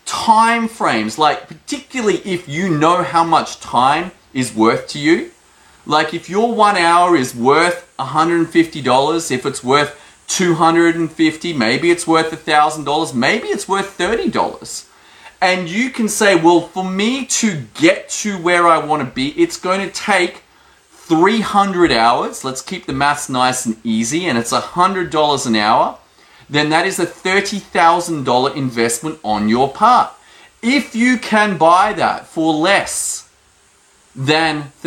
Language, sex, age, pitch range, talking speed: English, male, 30-49, 150-200 Hz, 150 wpm